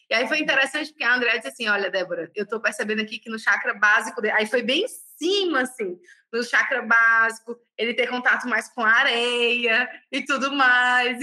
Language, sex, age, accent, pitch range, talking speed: Portuguese, female, 20-39, Brazilian, 220-300 Hz, 210 wpm